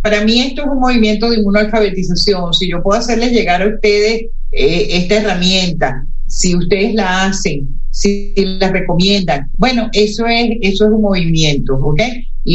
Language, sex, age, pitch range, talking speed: Spanish, female, 50-69, 155-215 Hz, 165 wpm